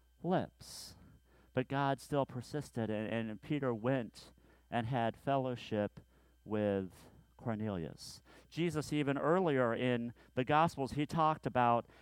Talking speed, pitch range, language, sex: 115 wpm, 110-145 Hz, English, male